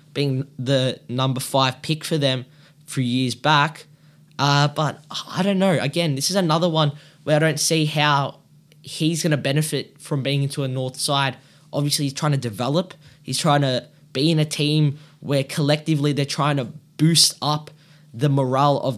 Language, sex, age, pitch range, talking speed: English, male, 10-29, 135-155 Hz, 180 wpm